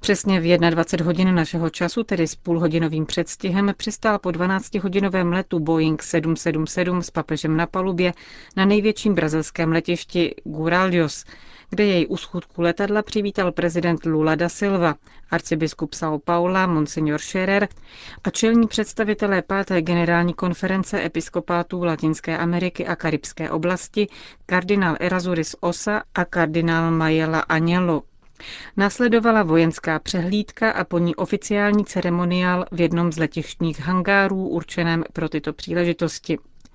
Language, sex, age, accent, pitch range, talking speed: Czech, female, 40-59, native, 165-195 Hz, 120 wpm